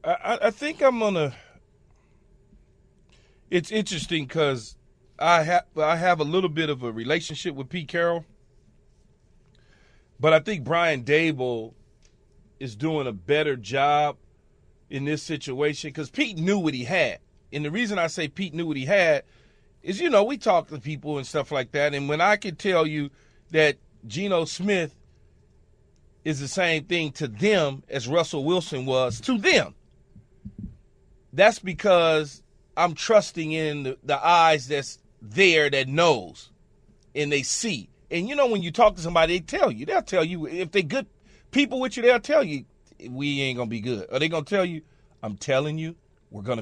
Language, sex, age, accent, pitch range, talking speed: English, male, 40-59, American, 140-190 Hz, 175 wpm